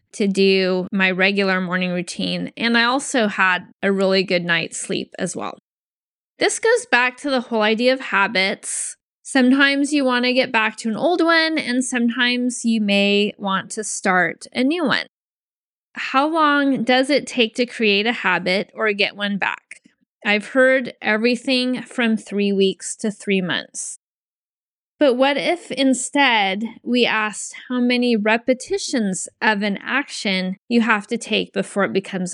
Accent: American